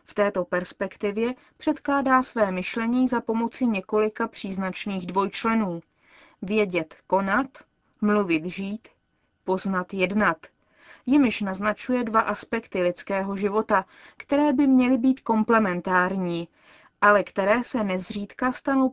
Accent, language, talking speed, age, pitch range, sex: native, Czech, 105 wpm, 30-49, 190-245 Hz, female